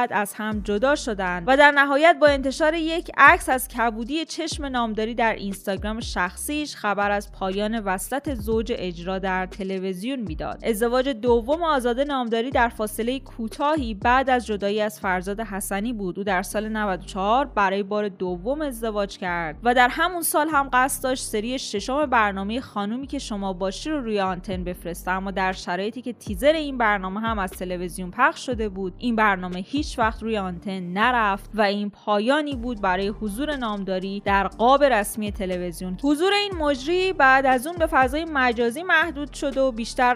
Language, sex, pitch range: Persian, female, 195-265 Hz